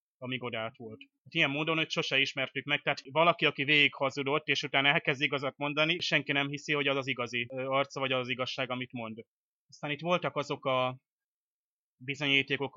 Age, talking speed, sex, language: 20-39, 185 wpm, male, Hungarian